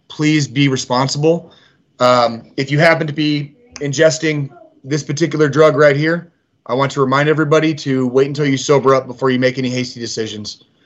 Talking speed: 175 wpm